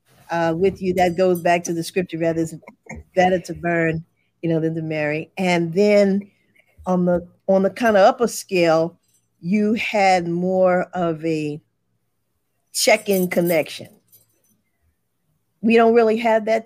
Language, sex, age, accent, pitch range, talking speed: English, female, 40-59, American, 165-195 Hz, 150 wpm